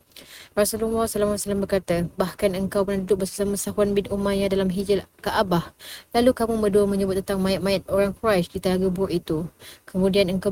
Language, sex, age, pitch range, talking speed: Malay, female, 20-39, 185-210 Hz, 160 wpm